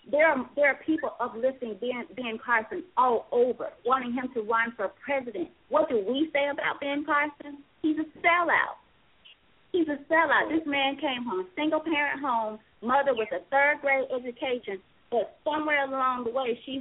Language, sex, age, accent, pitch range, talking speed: English, female, 30-49, American, 245-320 Hz, 165 wpm